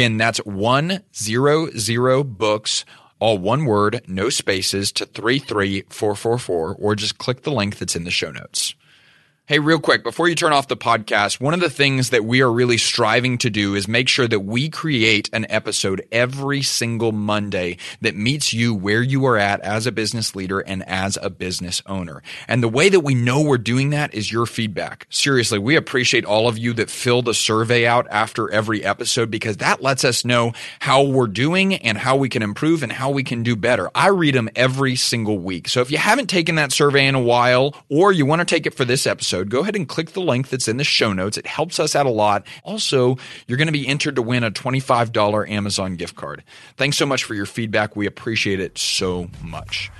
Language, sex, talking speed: English, male, 215 wpm